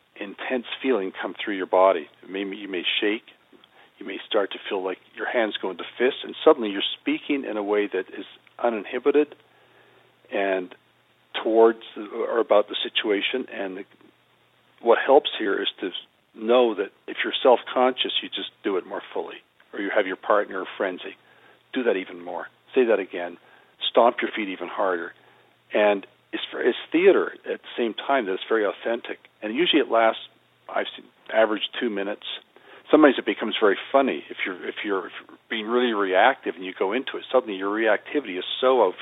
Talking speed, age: 175 wpm, 50-69